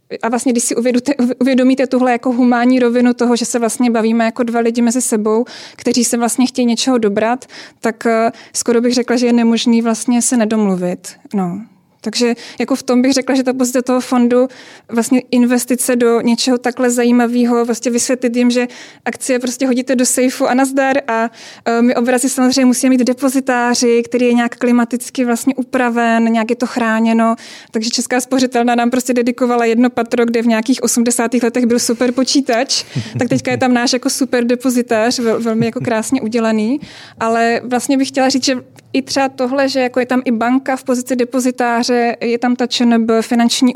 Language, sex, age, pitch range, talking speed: Czech, female, 20-39, 235-260 Hz, 180 wpm